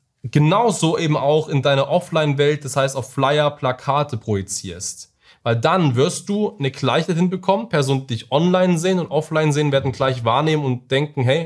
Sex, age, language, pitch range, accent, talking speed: male, 20-39, German, 125-155 Hz, German, 175 wpm